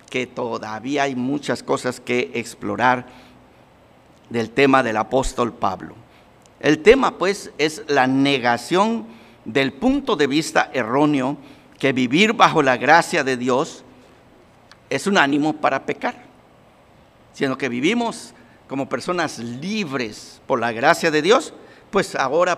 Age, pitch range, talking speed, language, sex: 50-69, 125-170 Hz, 130 wpm, Spanish, male